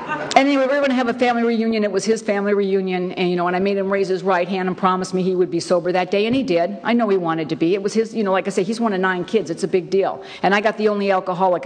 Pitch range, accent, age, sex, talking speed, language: 165-215 Hz, American, 50-69, female, 340 wpm, English